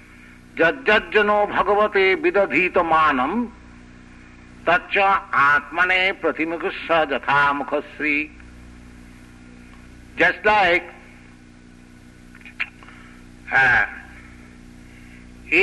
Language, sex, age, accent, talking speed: English, male, 60-79, Indian, 40 wpm